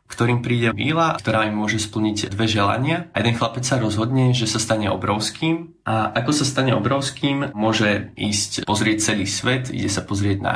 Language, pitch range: Slovak, 105-115 Hz